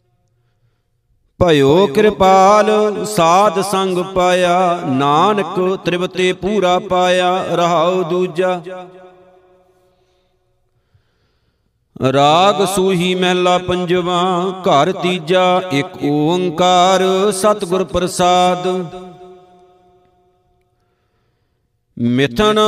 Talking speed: 60 wpm